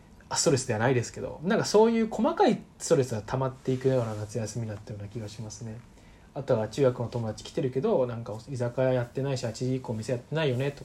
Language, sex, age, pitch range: Japanese, male, 20-39, 110-145 Hz